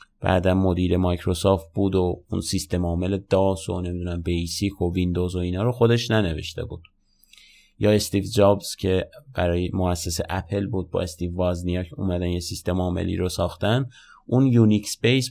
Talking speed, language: 155 wpm, Persian